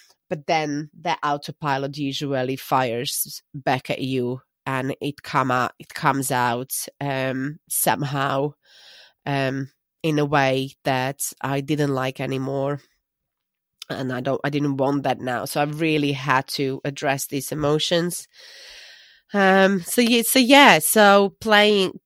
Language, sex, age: English, female, 30-49